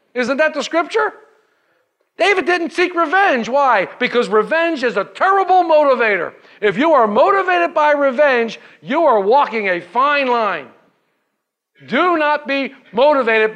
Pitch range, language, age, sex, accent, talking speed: 210-295 Hz, English, 50-69, male, American, 135 wpm